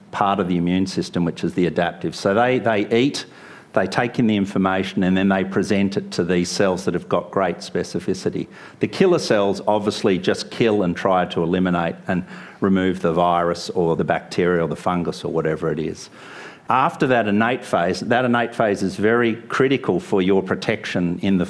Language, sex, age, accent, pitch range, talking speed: English, male, 50-69, Australian, 90-105 Hz, 195 wpm